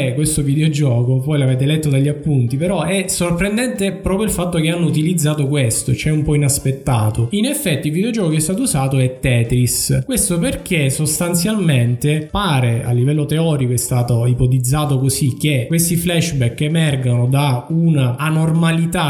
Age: 20-39